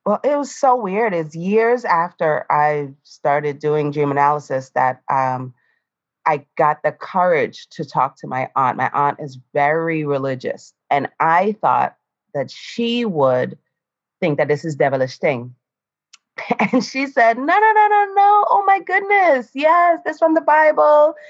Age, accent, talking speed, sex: 30-49, American, 160 wpm, female